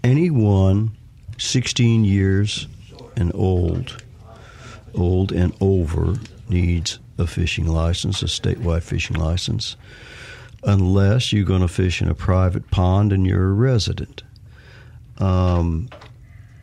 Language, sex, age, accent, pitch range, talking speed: English, male, 60-79, American, 95-115 Hz, 110 wpm